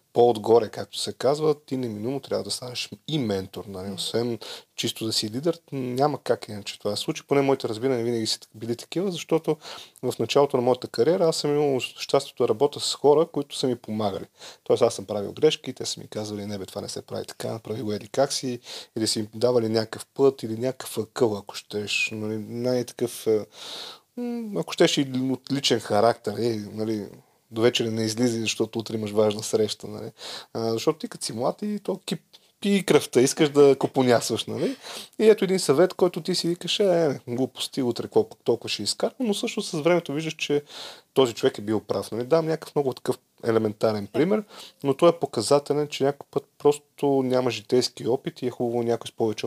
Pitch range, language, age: 110-150 Hz, Bulgarian, 30-49